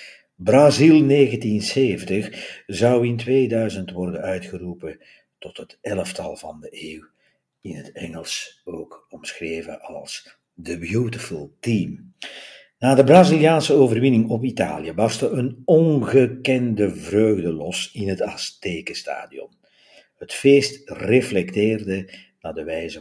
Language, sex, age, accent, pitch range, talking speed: Dutch, male, 50-69, Dutch, 90-130 Hz, 110 wpm